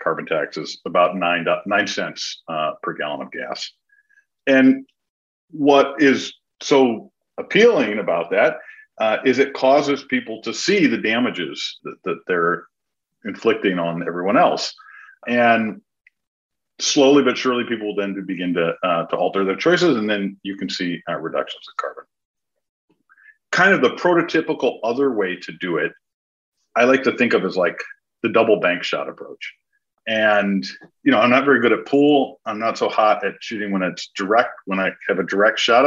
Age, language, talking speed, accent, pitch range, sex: 50-69, English, 170 wpm, American, 95-150 Hz, male